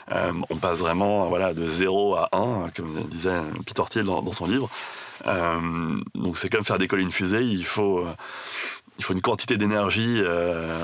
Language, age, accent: French, 30-49, French